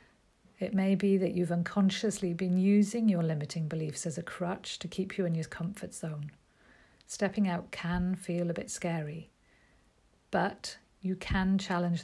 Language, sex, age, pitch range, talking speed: English, female, 50-69, 170-205 Hz, 160 wpm